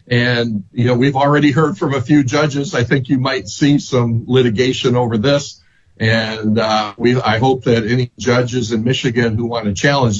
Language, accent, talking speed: English, American, 195 wpm